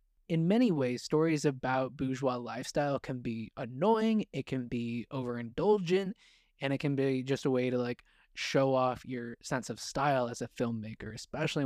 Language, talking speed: English, 170 wpm